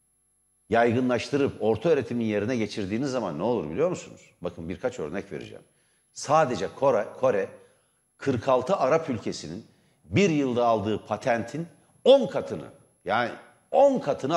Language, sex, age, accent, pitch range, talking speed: Turkish, male, 60-79, native, 115-160 Hz, 120 wpm